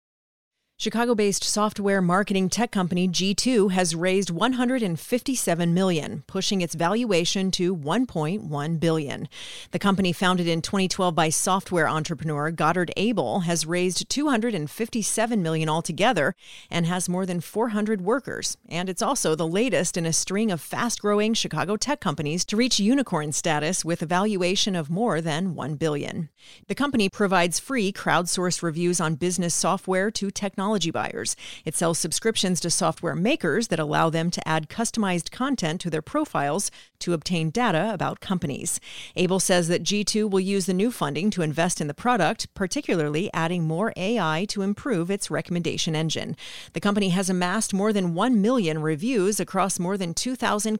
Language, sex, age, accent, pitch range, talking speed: English, female, 40-59, American, 170-210 Hz, 155 wpm